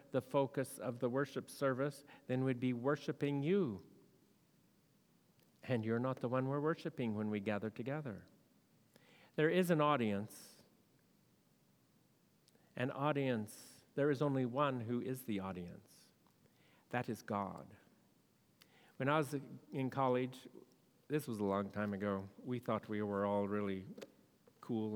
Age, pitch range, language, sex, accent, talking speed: 50-69, 115-150 Hz, English, male, American, 135 wpm